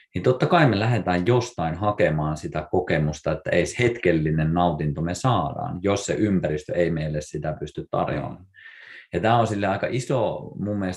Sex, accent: male, native